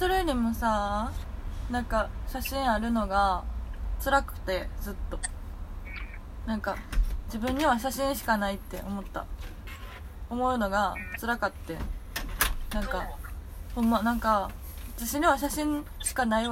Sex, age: female, 20-39